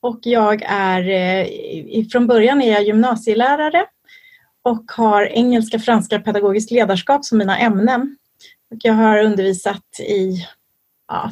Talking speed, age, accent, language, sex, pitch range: 115 wpm, 30-49, native, Swedish, female, 205-265 Hz